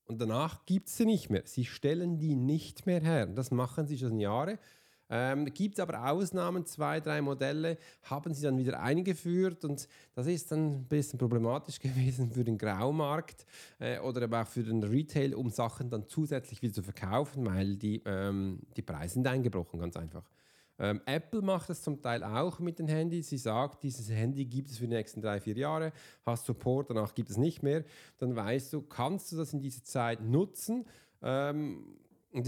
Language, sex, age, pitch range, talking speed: German, male, 40-59, 115-150 Hz, 195 wpm